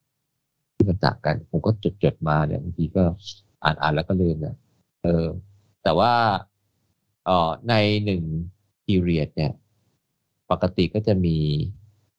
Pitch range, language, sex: 90-110 Hz, Thai, male